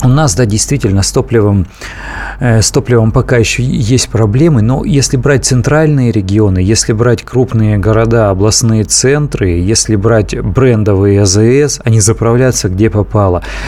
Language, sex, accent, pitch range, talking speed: Russian, male, native, 105-130 Hz, 130 wpm